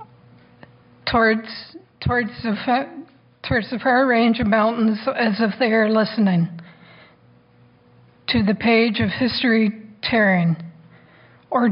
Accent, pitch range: American, 195-235 Hz